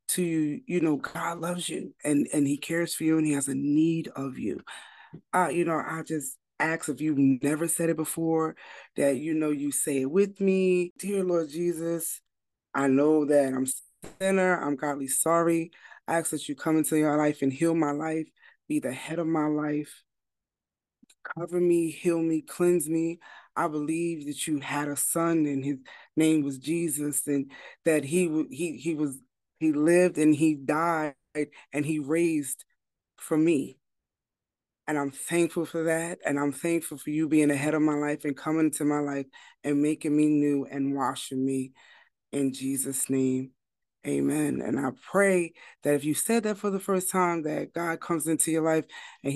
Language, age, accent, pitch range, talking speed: English, 20-39, American, 145-165 Hz, 190 wpm